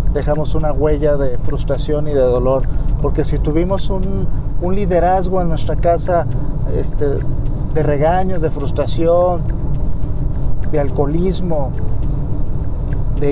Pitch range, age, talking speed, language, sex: 125-160 Hz, 50-69, 110 wpm, Spanish, male